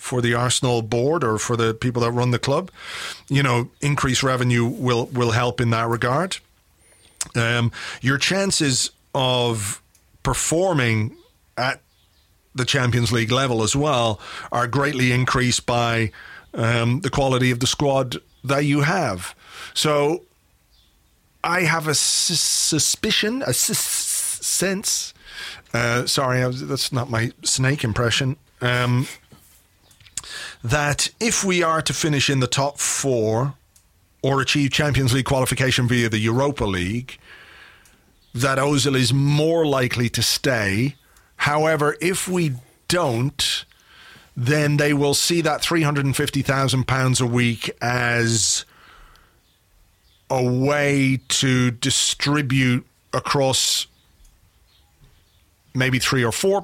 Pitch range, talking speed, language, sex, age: 115-140 Hz, 115 wpm, English, male, 40-59